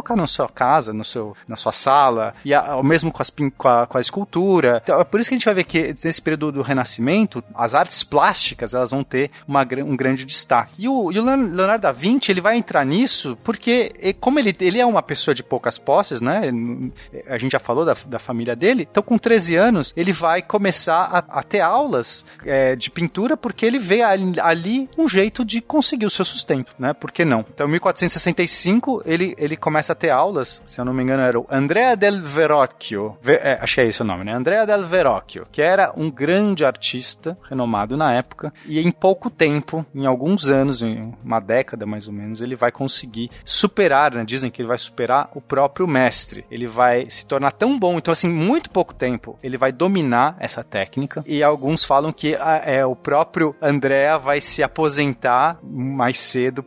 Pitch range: 125-185 Hz